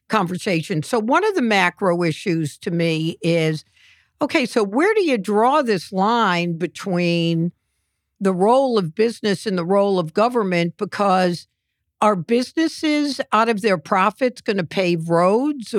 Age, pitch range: 60-79, 170-215 Hz